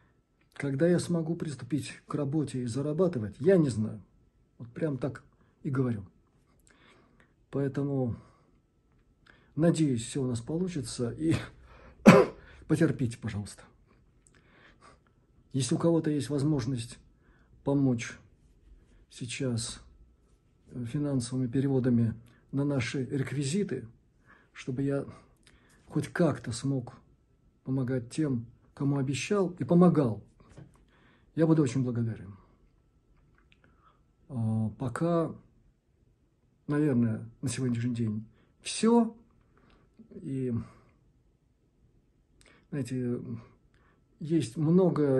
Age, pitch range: 50-69, 120-150 Hz